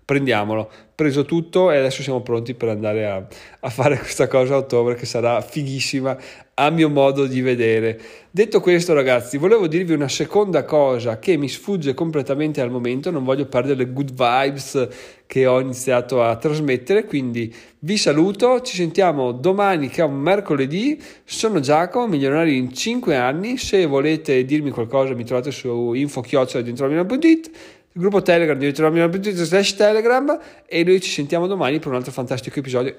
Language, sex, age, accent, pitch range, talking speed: Italian, male, 30-49, native, 130-165 Hz, 165 wpm